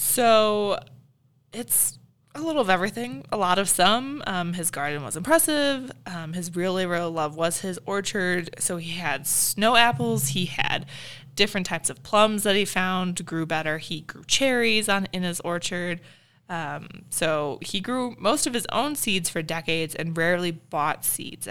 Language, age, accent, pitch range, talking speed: English, 20-39, American, 160-195 Hz, 170 wpm